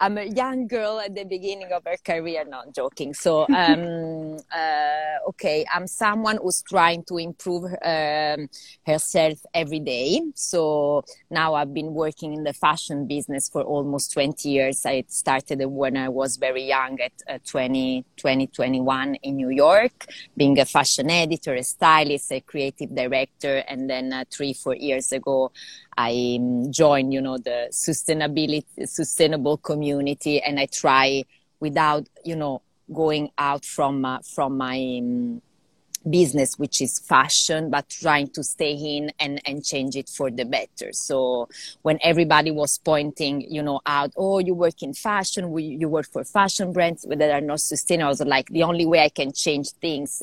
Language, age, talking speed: Portuguese, 30-49, 165 wpm